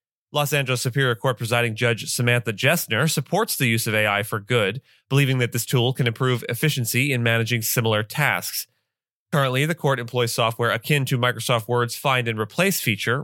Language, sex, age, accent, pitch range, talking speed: English, male, 30-49, American, 115-140 Hz, 175 wpm